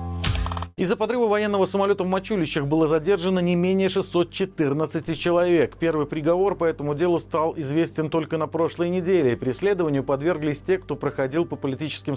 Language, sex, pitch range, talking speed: Russian, male, 140-180 Hz, 150 wpm